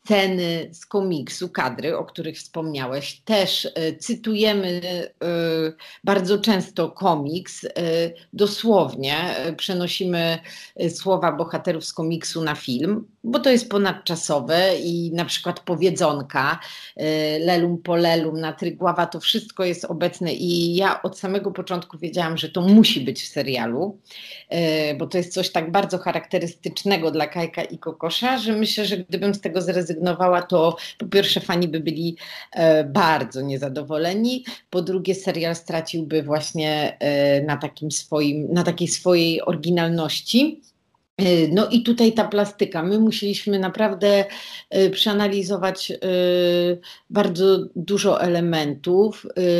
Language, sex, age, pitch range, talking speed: Polish, female, 40-59, 165-200 Hz, 125 wpm